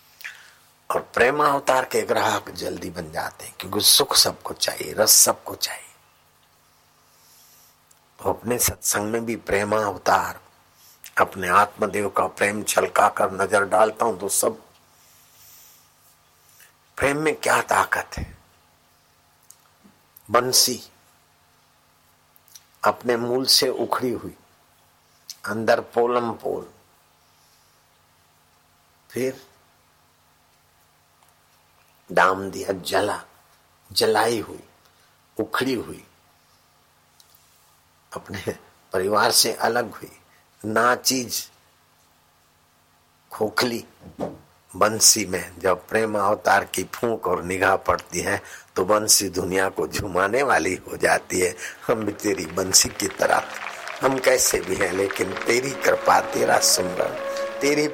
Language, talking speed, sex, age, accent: Hindi, 100 wpm, male, 60-79, native